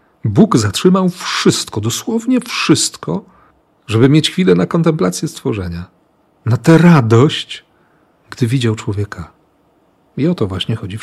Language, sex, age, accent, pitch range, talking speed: Polish, male, 40-59, native, 110-140 Hz, 125 wpm